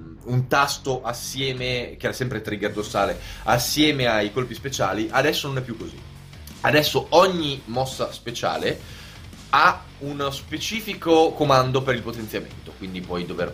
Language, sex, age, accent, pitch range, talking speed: Italian, male, 20-39, native, 95-135 Hz, 135 wpm